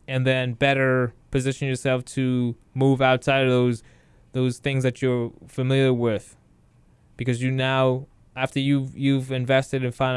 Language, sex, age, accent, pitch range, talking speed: English, male, 20-39, American, 125-140 Hz, 150 wpm